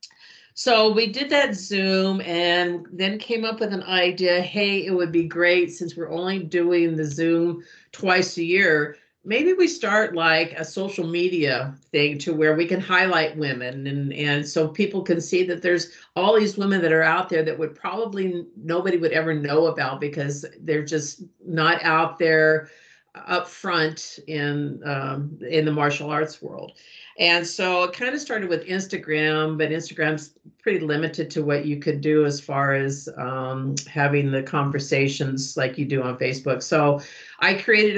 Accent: American